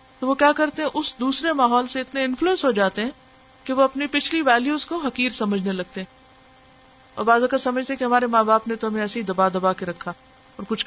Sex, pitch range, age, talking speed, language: female, 195-245 Hz, 50-69, 235 wpm, Urdu